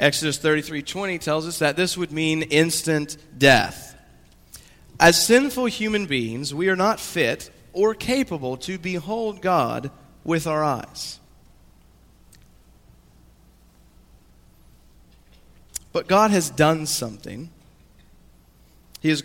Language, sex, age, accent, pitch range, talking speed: English, male, 40-59, American, 120-170 Hz, 105 wpm